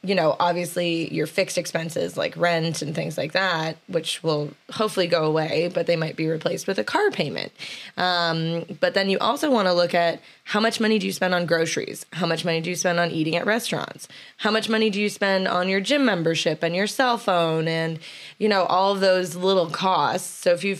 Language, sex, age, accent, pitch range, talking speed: English, female, 20-39, American, 170-195 Hz, 225 wpm